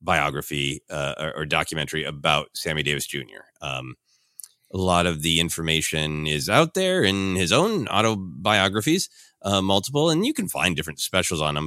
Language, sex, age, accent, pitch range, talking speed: English, male, 30-49, American, 80-110 Hz, 160 wpm